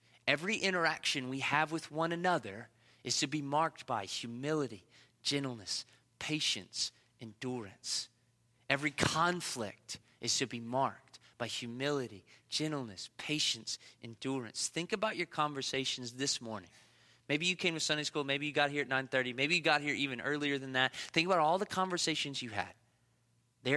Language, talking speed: English, 155 wpm